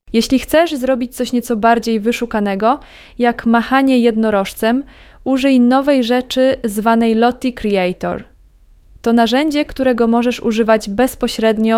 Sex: female